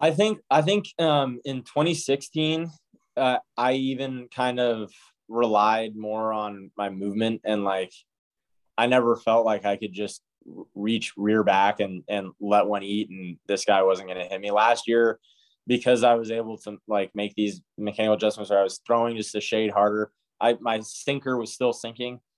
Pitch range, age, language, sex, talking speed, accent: 105-125 Hz, 20-39, English, male, 180 wpm, American